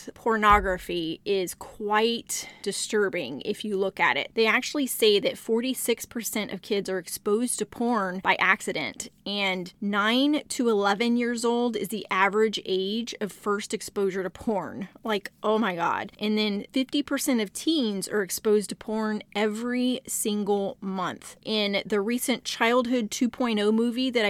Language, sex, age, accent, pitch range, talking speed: English, female, 30-49, American, 195-225 Hz, 150 wpm